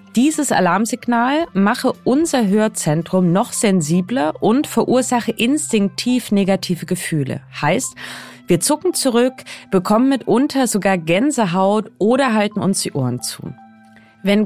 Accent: German